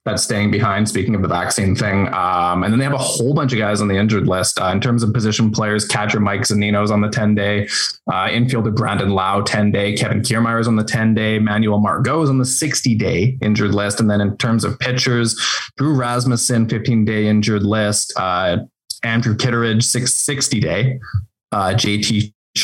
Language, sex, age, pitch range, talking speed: English, male, 20-39, 100-125 Hz, 205 wpm